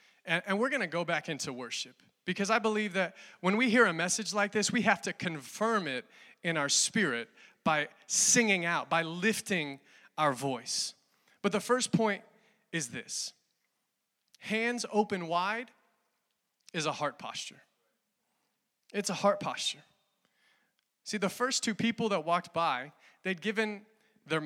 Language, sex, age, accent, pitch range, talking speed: English, male, 30-49, American, 170-220 Hz, 150 wpm